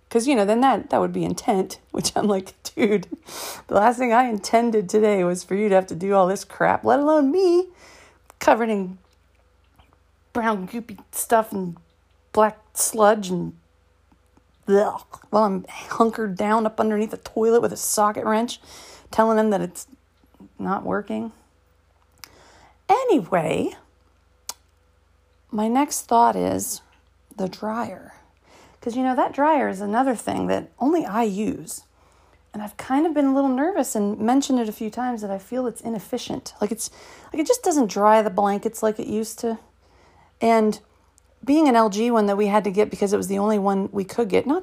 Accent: American